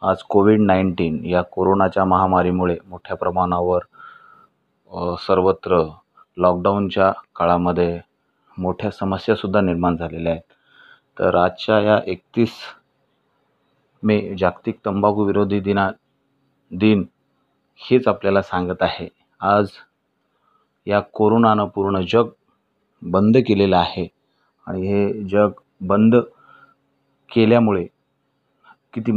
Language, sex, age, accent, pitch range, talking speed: Marathi, male, 30-49, native, 90-105 Hz, 90 wpm